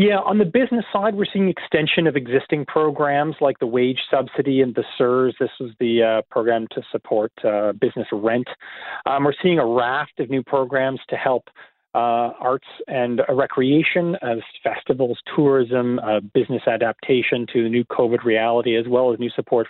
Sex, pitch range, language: male, 120-165 Hz, English